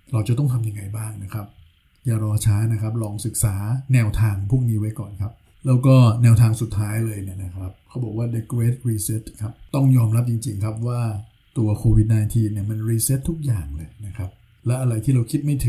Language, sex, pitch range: Thai, male, 110-125 Hz